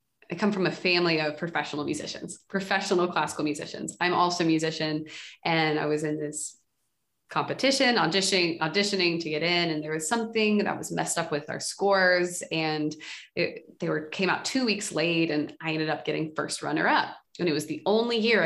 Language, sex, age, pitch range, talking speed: English, female, 20-39, 155-195 Hz, 195 wpm